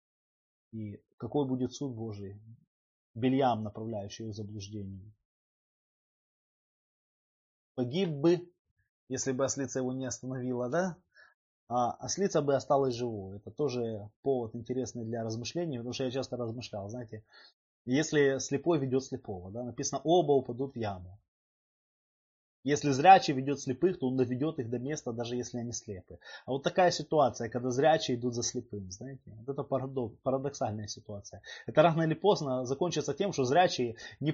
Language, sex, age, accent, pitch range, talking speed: Russian, male, 20-39, native, 115-145 Hz, 145 wpm